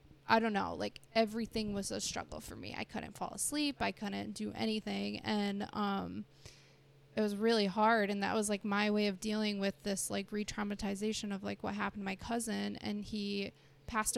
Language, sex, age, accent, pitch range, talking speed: English, female, 20-39, American, 195-215 Hz, 195 wpm